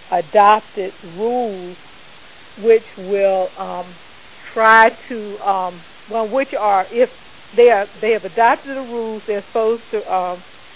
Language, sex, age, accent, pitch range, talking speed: English, female, 60-79, American, 180-220 Hz, 130 wpm